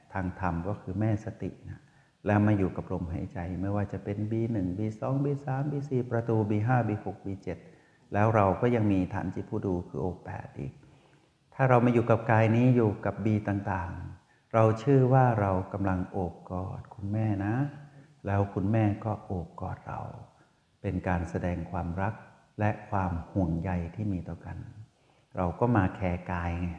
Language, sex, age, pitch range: Thai, male, 60-79, 95-115 Hz